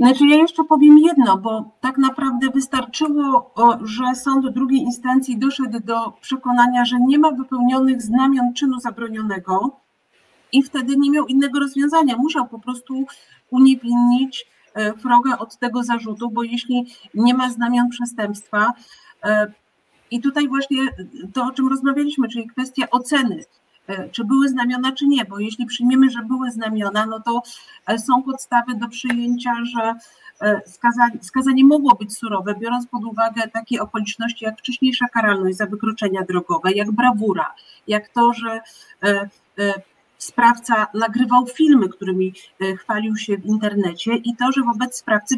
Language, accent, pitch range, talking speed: Polish, native, 220-255 Hz, 140 wpm